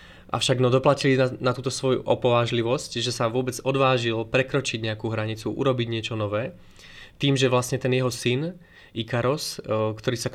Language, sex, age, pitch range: Slovak, male, 20-39, 110-130 Hz